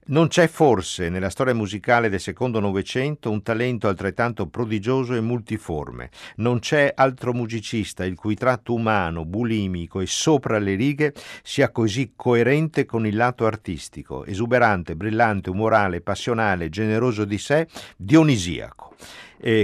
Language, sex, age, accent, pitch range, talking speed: Italian, male, 50-69, native, 85-115 Hz, 135 wpm